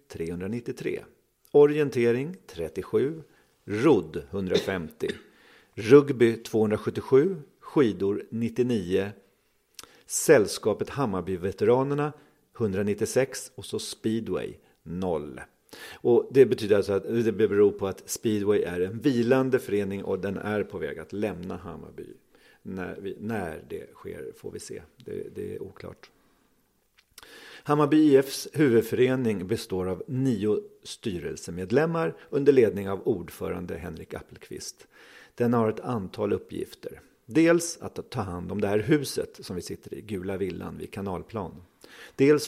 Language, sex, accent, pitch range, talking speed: Swedish, male, native, 100-150 Hz, 120 wpm